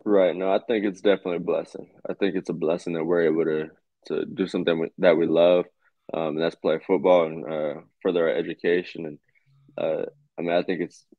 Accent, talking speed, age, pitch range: American, 215 wpm, 20-39, 80-90 Hz